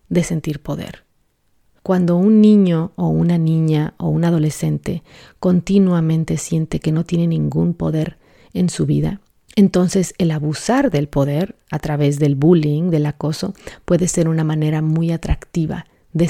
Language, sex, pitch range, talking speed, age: Spanish, female, 155-180 Hz, 145 wpm, 40-59